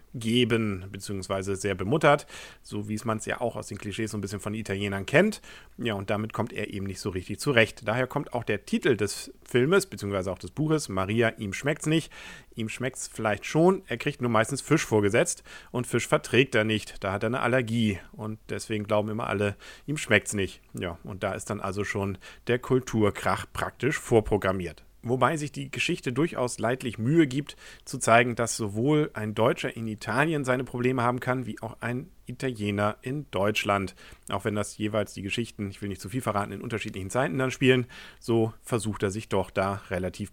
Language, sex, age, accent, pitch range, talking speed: German, male, 40-59, German, 105-130 Hz, 200 wpm